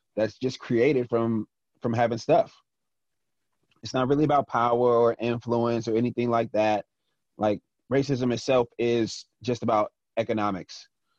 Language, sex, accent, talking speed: English, male, American, 135 wpm